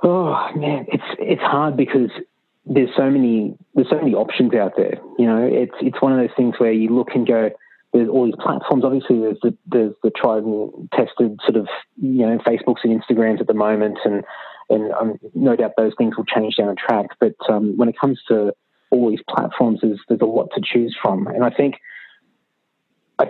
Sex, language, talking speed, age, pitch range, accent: male, English, 210 wpm, 20-39, 105-125 Hz, Australian